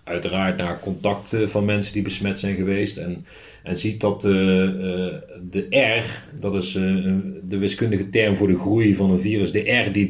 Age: 30-49